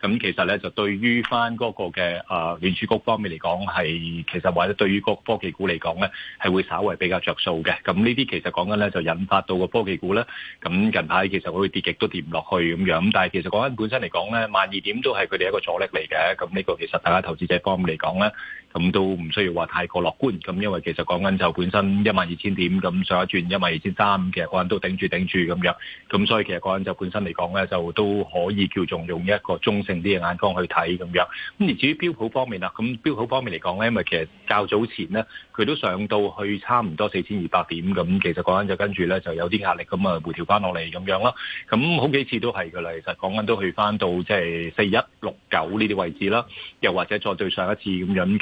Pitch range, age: 90-105 Hz, 30-49